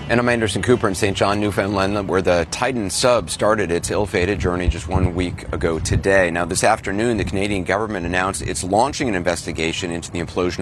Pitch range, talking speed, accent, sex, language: 85-105 Hz, 200 wpm, American, male, English